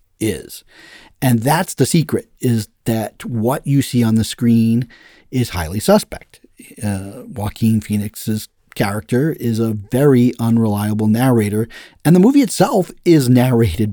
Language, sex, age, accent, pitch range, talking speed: English, male, 40-59, American, 105-130 Hz, 135 wpm